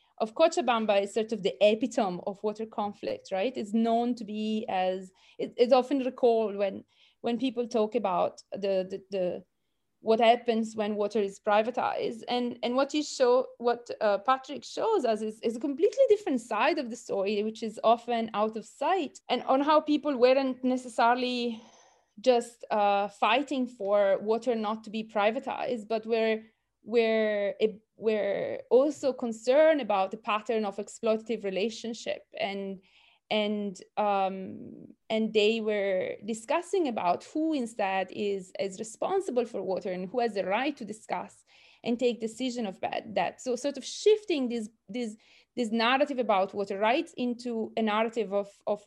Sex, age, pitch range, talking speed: female, 20-39, 210-255 Hz, 160 wpm